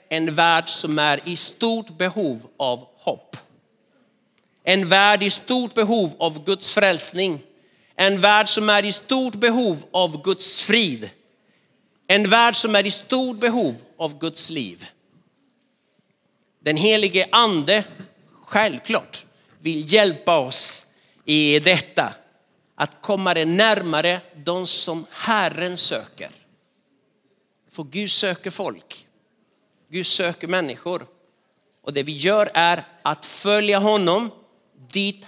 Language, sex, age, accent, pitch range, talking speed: Swedish, male, 50-69, native, 165-210 Hz, 120 wpm